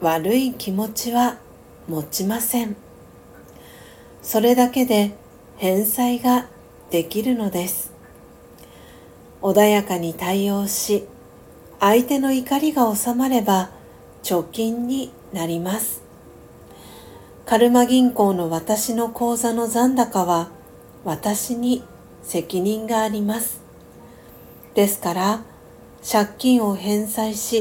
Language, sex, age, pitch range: Japanese, female, 50-69, 195-240 Hz